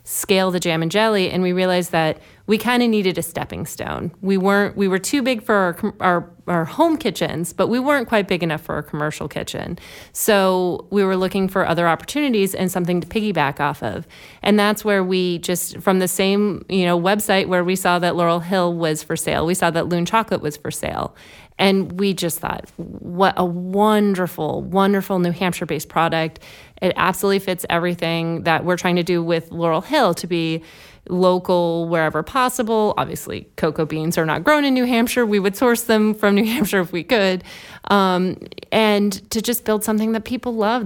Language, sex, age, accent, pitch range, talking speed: English, female, 30-49, American, 170-205 Hz, 195 wpm